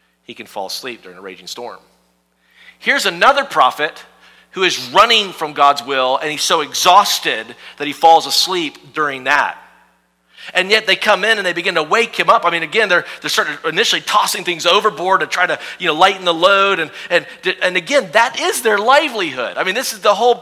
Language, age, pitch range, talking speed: English, 40-59, 150-240 Hz, 205 wpm